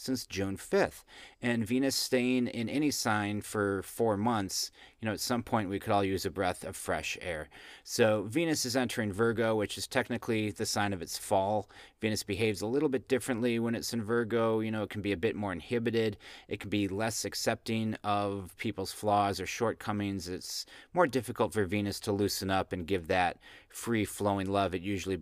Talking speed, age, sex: 200 wpm, 30-49, male